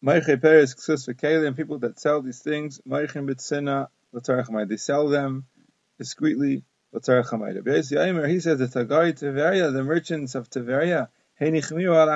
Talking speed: 80 wpm